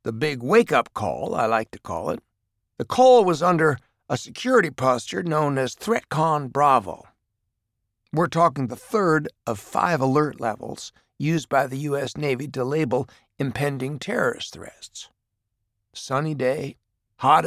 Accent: American